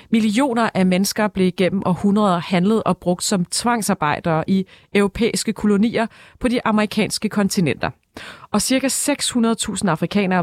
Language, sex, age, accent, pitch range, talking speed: Danish, female, 30-49, native, 180-220 Hz, 125 wpm